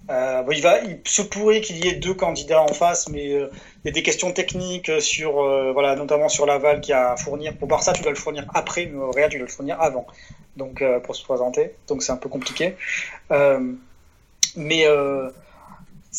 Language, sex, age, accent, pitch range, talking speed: French, male, 30-49, French, 145-185 Hz, 220 wpm